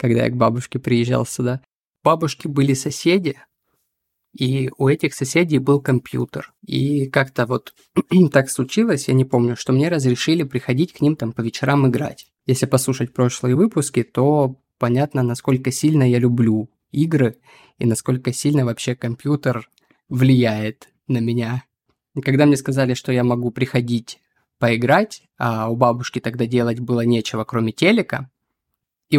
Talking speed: 150 wpm